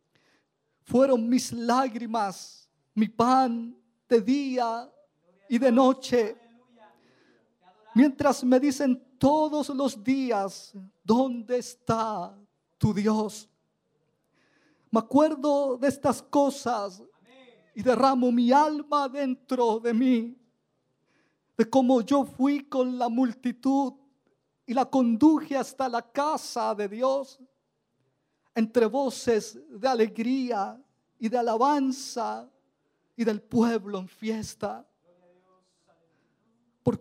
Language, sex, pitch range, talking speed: Spanish, male, 230-270 Hz, 95 wpm